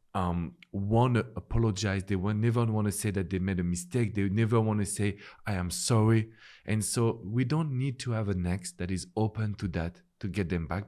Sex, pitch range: male, 90-115 Hz